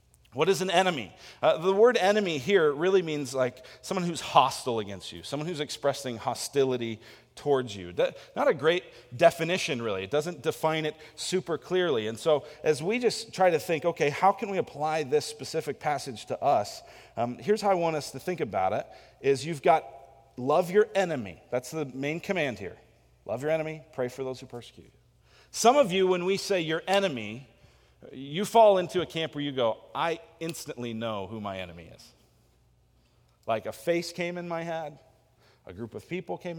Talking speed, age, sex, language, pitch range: 190 wpm, 40-59, male, English, 115-170 Hz